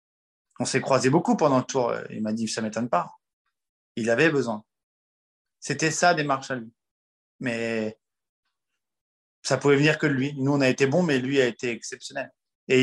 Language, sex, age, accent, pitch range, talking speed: French, male, 20-39, French, 120-140 Hz, 180 wpm